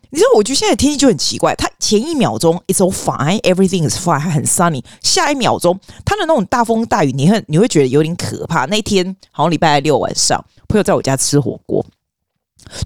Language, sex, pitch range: Chinese, female, 150-210 Hz